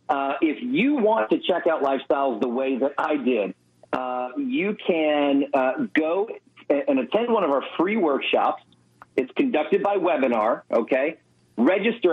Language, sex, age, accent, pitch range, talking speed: English, male, 40-59, American, 130-215 Hz, 155 wpm